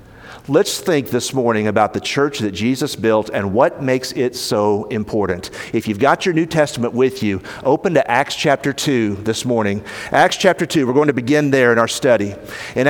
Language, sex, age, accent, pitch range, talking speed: English, male, 50-69, American, 135-205 Hz, 200 wpm